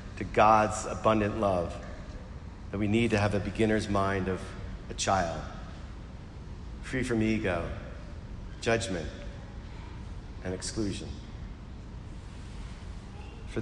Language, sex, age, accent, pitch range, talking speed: English, male, 40-59, American, 95-110 Hz, 95 wpm